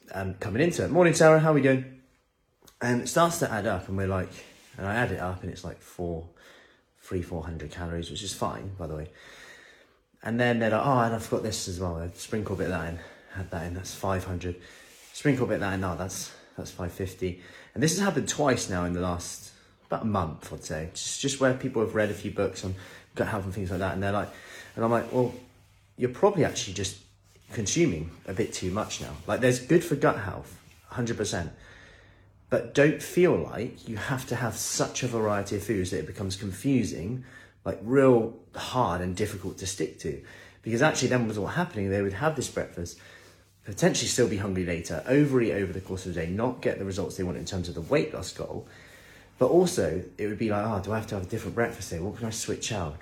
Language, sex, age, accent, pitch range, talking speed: English, male, 20-39, British, 95-120 Hz, 235 wpm